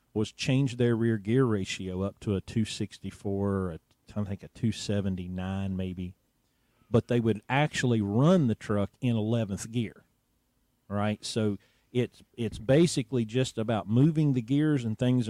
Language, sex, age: English, male, 40-59